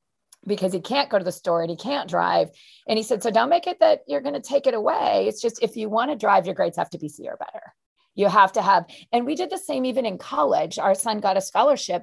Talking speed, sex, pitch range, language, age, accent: 270 wpm, female, 185-240 Hz, English, 40-59, American